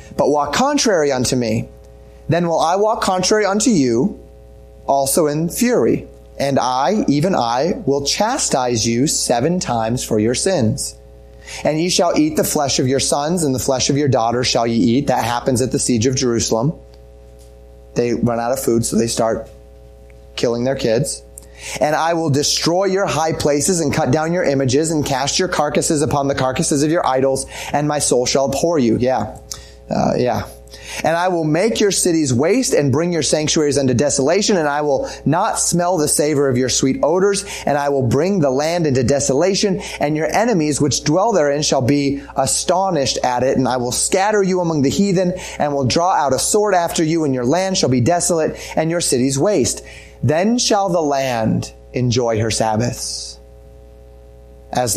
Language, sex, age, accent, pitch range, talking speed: English, male, 30-49, American, 110-160 Hz, 190 wpm